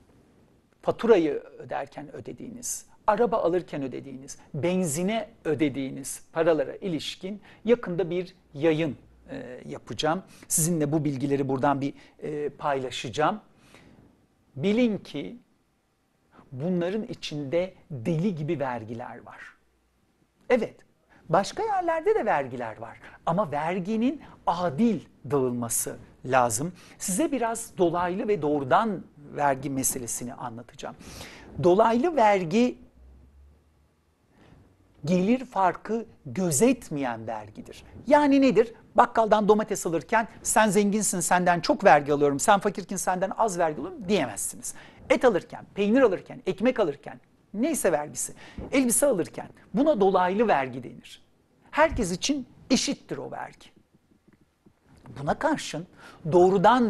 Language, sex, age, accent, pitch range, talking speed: Turkish, male, 60-79, native, 140-220 Hz, 100 wpm